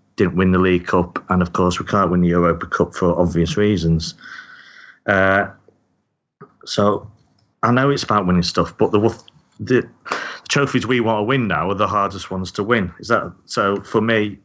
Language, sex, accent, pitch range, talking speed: English, male, British, 90-110 Hz, 190 wpm